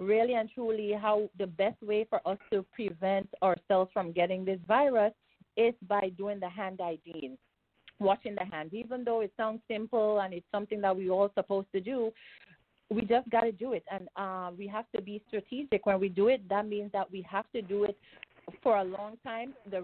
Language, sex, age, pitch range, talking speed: English, female, 30-49, 190-225 Hz, 210 wpm